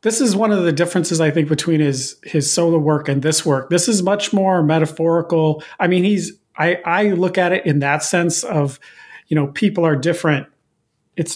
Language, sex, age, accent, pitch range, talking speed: English, male, 40-59, American, 150-180 Hz, 205 wpm